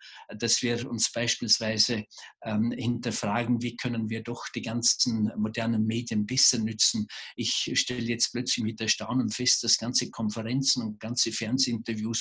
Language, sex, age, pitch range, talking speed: German, male, 50-69, 110-125 Hz, 145 wpm